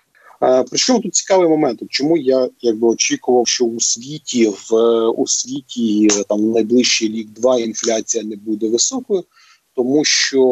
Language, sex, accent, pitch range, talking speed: Ukrainian, male, native, 115-130 Hz, 150 wpm